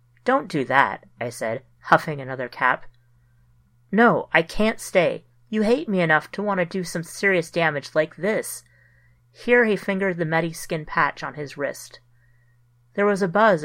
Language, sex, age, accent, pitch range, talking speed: English, female, 30-49, American, 125-185 Hz, 170 wpm